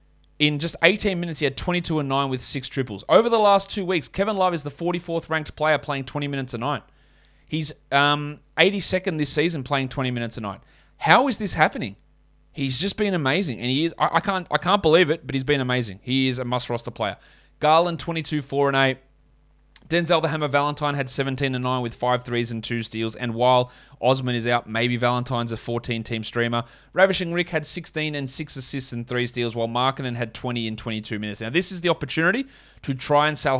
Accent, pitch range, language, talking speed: Australian, 120-155 Hz, English, 215 wpm